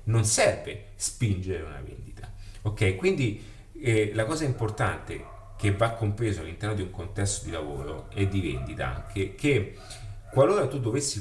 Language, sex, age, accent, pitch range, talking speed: Italian, male, 40-59, native, 100-115 Hz, 155 wpm